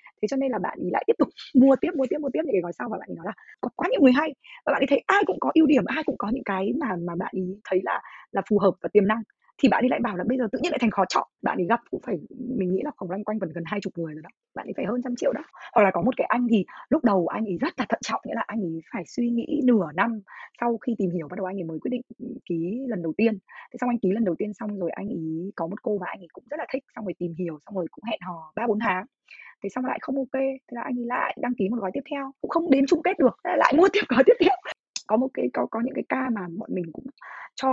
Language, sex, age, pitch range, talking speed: Vietnamese, female, 20-39, 185-265 Hz, 330 wpm